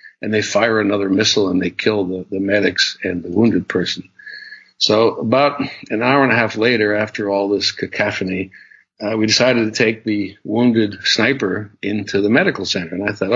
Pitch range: 100-125 Hz